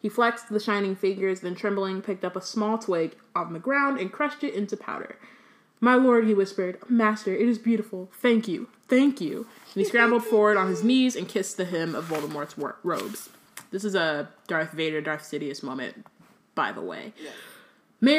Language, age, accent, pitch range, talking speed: English, 20-39, American, 170-220 Hz, 190 wpm